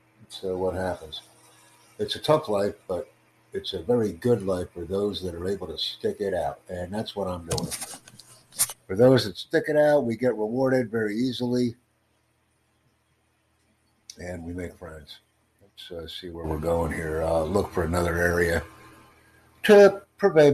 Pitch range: 85-105 Hz